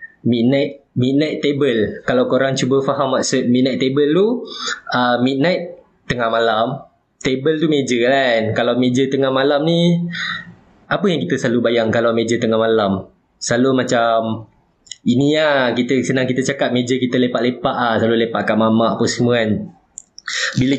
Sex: male